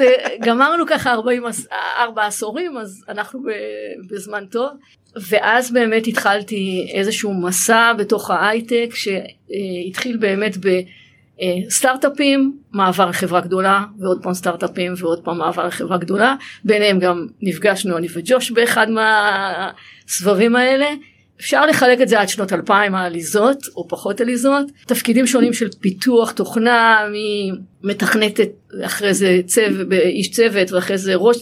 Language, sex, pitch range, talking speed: Hebrew, female, 185-235 Hz, 120 wpm